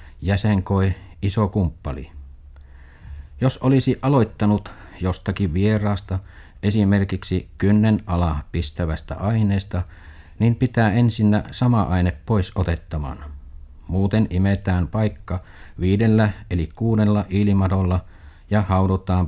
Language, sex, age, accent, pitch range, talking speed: Finnish, male, 50-69, native, 80-105 Hz, 90 wpm